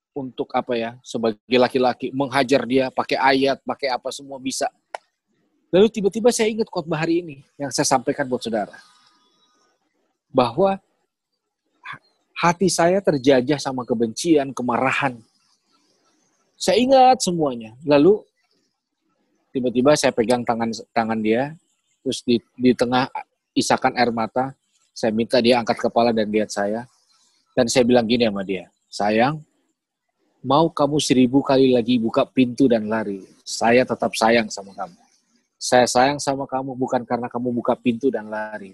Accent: native